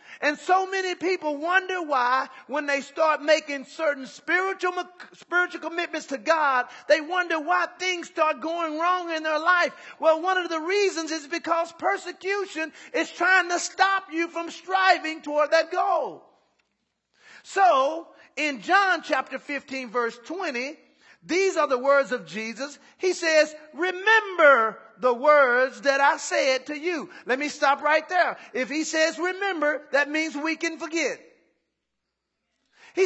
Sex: male